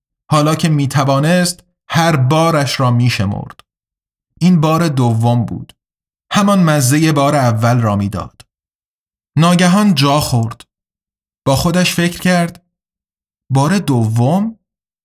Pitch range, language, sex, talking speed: 120-175 Hz, Persian, male, 110 wpm